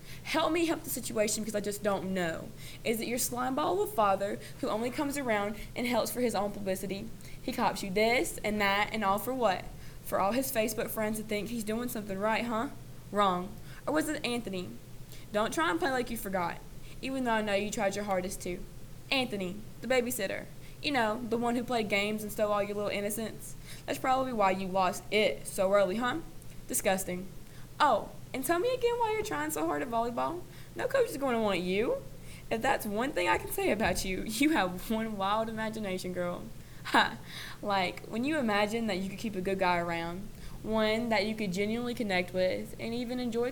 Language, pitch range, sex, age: English, 190-240 Hz, female, 20-39